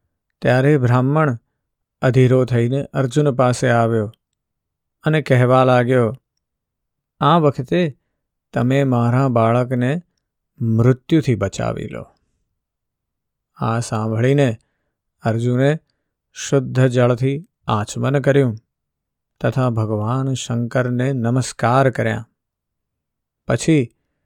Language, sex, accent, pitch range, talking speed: Gujarati, male, native, 115-140 Hz, 85 wpm